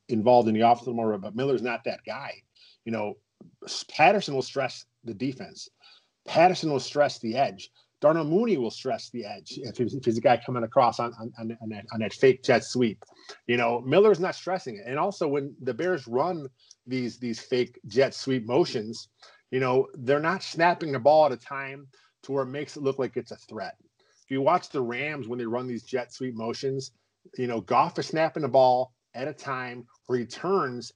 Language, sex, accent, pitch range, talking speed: English, male, American, 120-145 Hz, 205 wpm